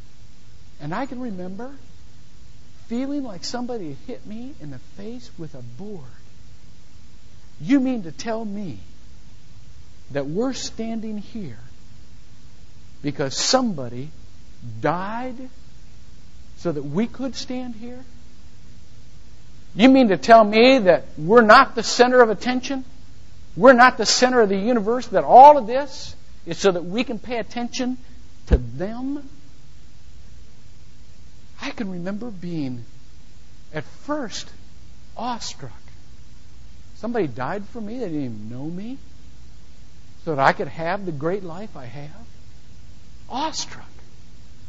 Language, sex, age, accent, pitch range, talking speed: English, male, 60-79, American, 150-250 Hz, 125 wpm